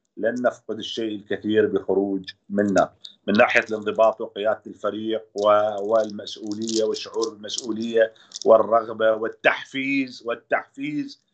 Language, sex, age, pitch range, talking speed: Arabic, male, 40-59, 110-125 Hz, 95 wpm